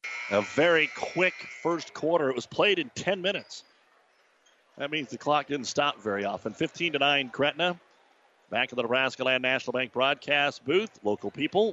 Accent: American